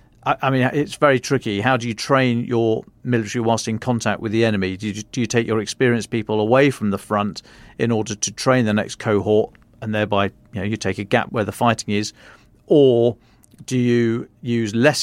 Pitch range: 110-125 Hz